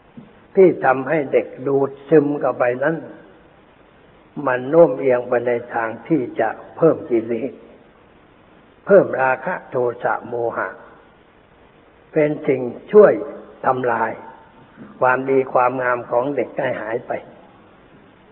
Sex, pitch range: male, 125-175 Hz